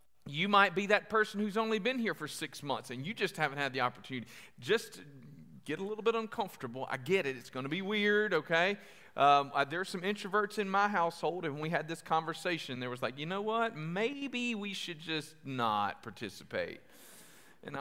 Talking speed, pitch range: 200 wpm, 145-215 Hz